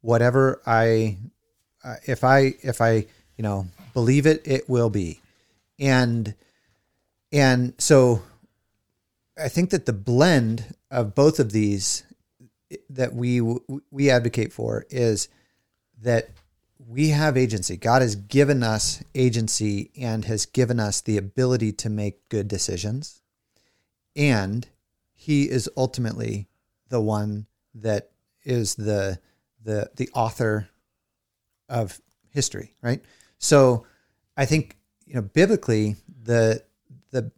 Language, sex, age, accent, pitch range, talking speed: English, male, 30-49, American, 105-130 Hz, 120 wpm